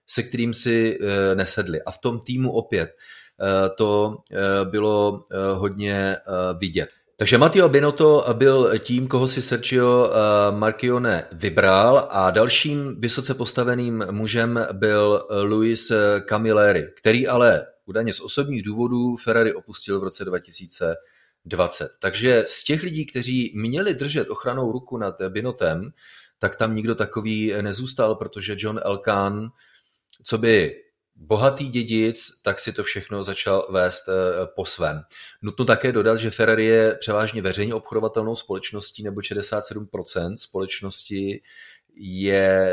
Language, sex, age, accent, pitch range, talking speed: Czech, male, 30-49, native, 100-120 Hz, 120 wpm